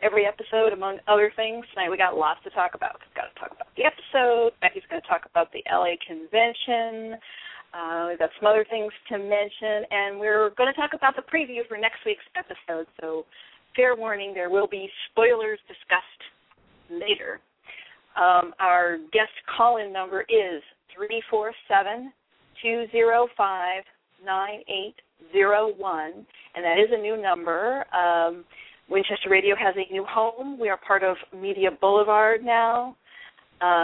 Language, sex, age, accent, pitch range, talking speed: English, female, 40-59, American, 190-235 Hz, 165 wpm